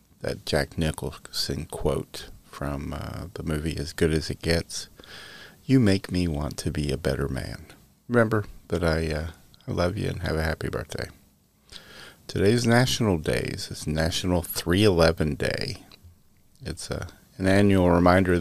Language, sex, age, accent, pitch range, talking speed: English, male, 40-59, American, 80-100 Hz, 150 wpm